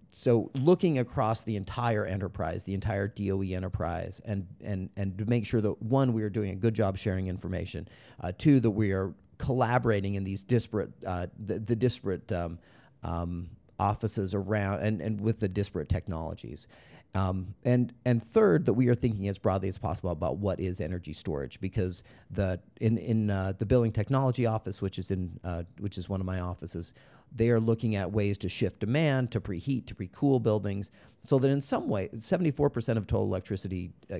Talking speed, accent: 190 wpm, American